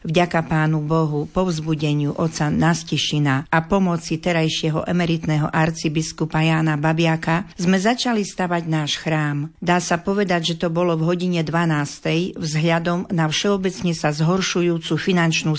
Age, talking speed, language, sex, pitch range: 50-69, 130 wpm, Slovak, female, 160-180 Hz